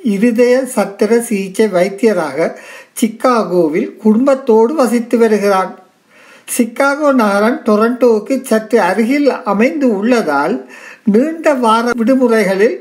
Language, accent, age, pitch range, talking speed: Tamil, native, 60-79, 210-255 Hz, 85 wpm